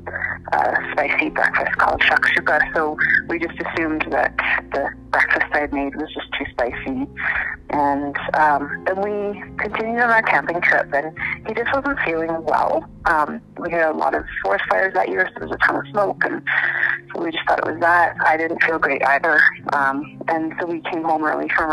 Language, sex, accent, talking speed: English, female, American, 200 wpm